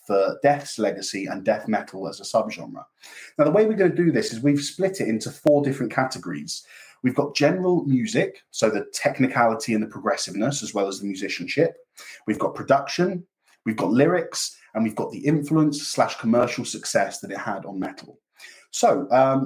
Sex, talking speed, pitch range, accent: male, 190 wpm, 110-145 Hz, British